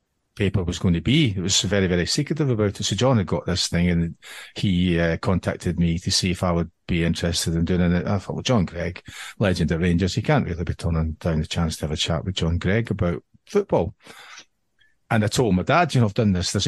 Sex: male